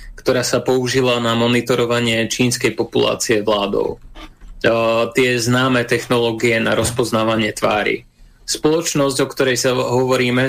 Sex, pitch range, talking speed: male, 115-130 Hz, 115 wpm